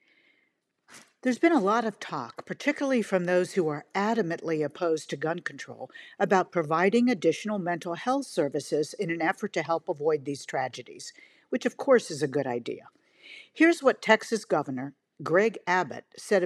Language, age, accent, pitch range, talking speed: English, 50-69, American, 165-230 Hz, 160 wpm